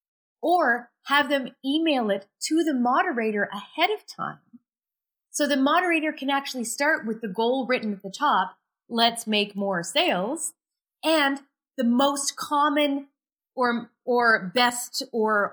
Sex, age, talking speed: female, 30-49, 140 wpm